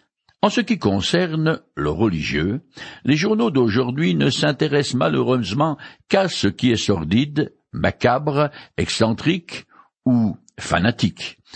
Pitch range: 105-155 Hz